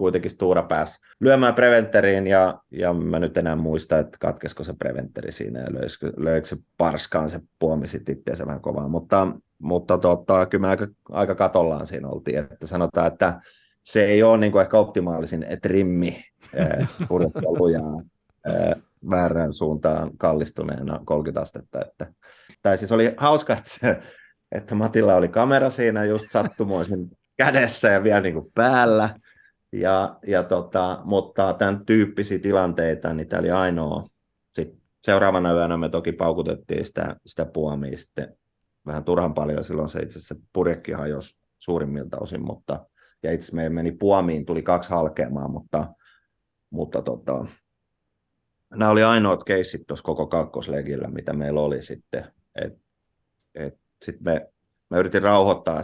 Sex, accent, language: male, native, Finnish